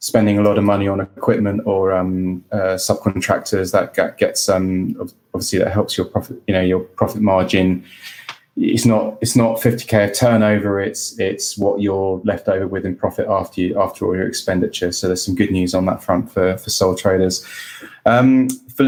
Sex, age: male, 20-39